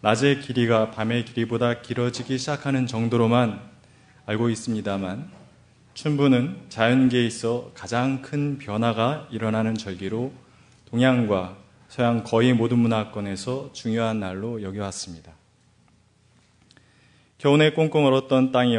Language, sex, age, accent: Korean, male, 30-49, native